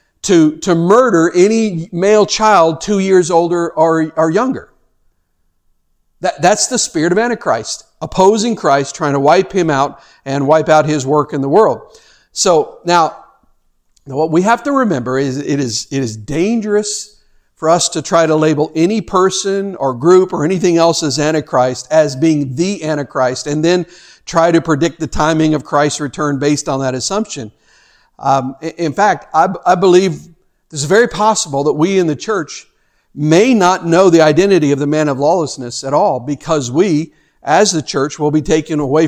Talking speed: 180 wpm